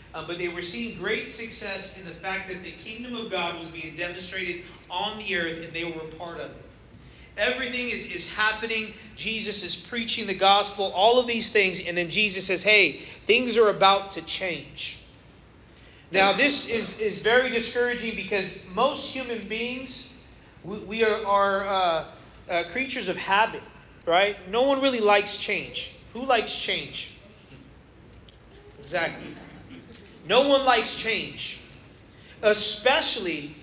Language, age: English, 30-49